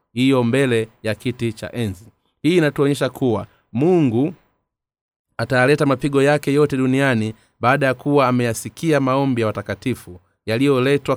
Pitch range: 110-140 Hz